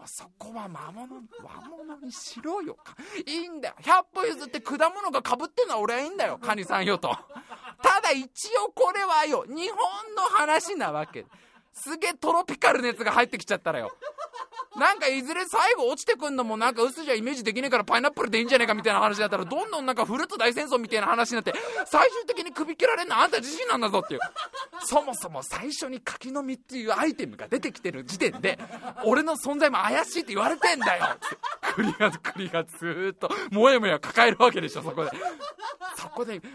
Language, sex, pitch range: Japanese, male, 200-310 Hz